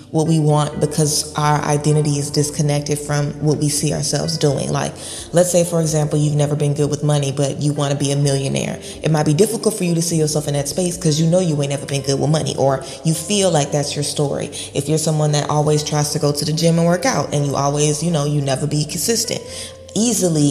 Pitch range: 145-165 Hz